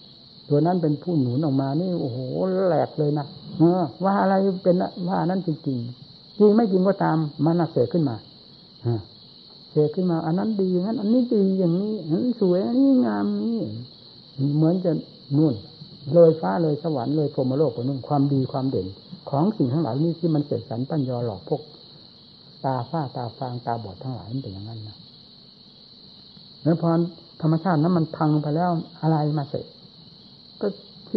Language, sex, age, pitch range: Thai, male, 60-79, 135-180 Hz